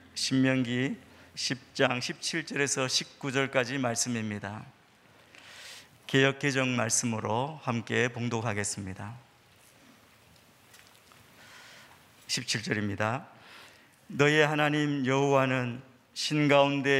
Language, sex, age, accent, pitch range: Korean, male, 50-69, native, 115-140 Hz